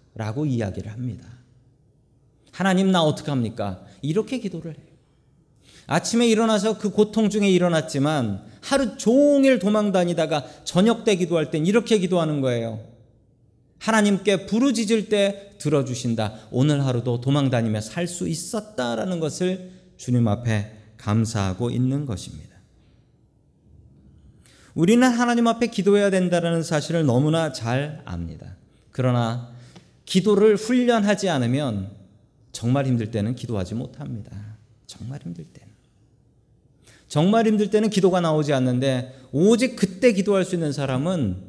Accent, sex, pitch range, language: native, male, 120-195 Hz, Korean